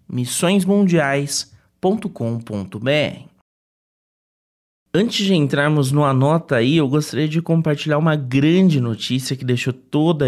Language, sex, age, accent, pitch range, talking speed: Portuguese, male, 30-49, Brazilian, 125-160 Hz, 100 wpm